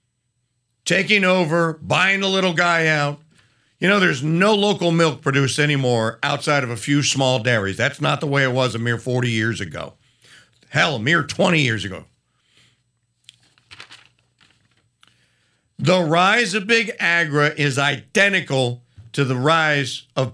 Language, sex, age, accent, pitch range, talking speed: English, male, 50-69, American, 120-175 Hz, 145 wpm